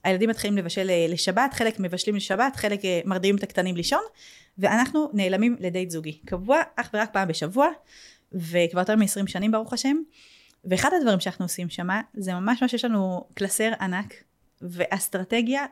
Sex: female